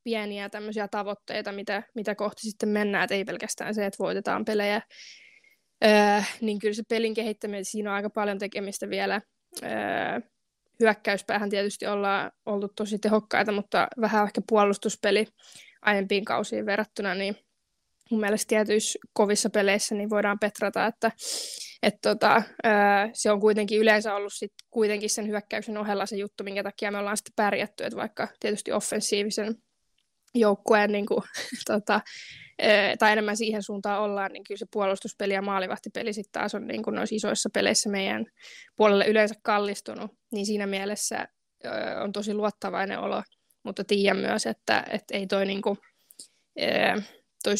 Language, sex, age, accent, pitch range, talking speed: Finnish, female, 20-39, native, 200-215 Hz, 150 wpm